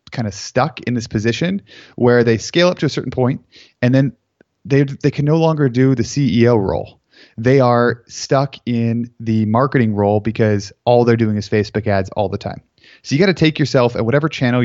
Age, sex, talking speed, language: 30-49, male, 210 wpm, English